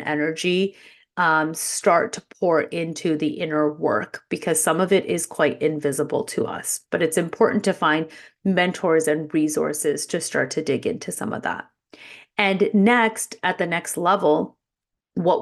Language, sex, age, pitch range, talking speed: English, female, 30-49, 155-180 Hz, 160 wpm